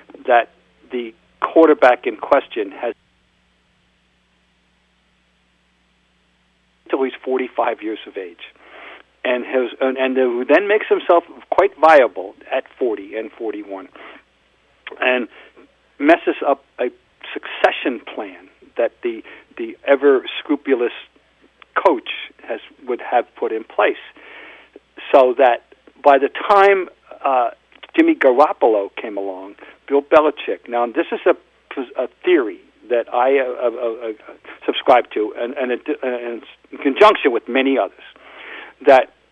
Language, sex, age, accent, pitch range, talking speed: English, male, 50-69, American, 115-175 Hz, 120 wpm